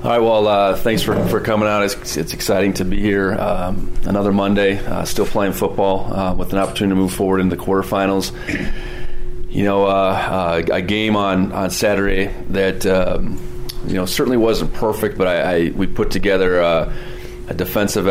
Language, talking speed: English, 185 wpm